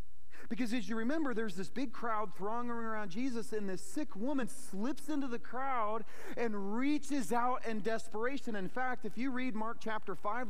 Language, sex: English, male